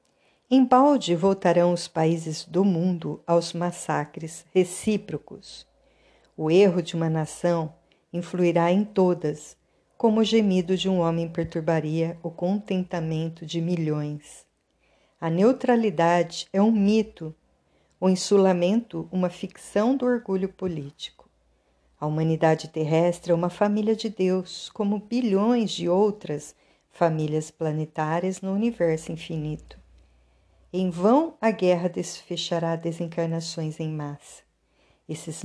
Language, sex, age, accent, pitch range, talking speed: Portuguese, female, 50-69, Brazilian, 165-195 Hz, 115 wpm